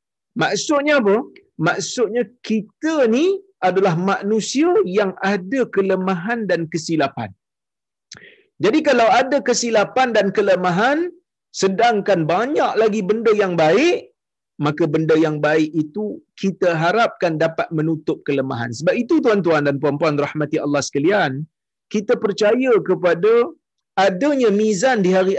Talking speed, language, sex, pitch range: 115 wpm, Malayalam, male, 170-235 Hz